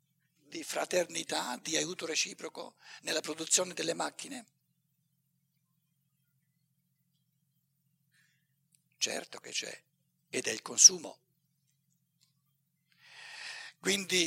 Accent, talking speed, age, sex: native, 70 wpm, 60-79, male